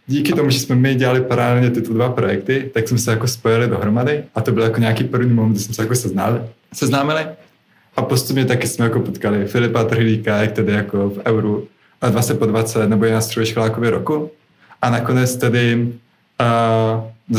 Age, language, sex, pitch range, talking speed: 20-39, Czech, male, 110-125 Hz, 180 wpm